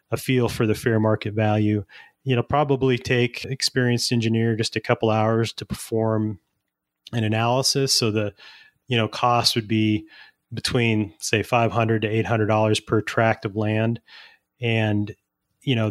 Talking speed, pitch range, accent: 145 wpm, 110-120 Hz, American